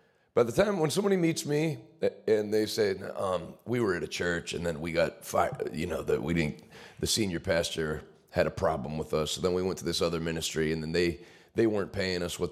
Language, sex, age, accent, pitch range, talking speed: English, male, 40-59, American, 110-165 Hz, 240 wpm